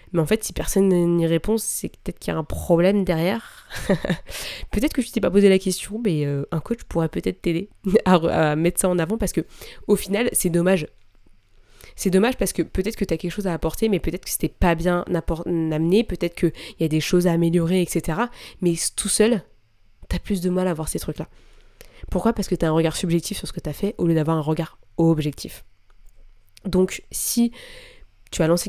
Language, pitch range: French, 160-210 Hz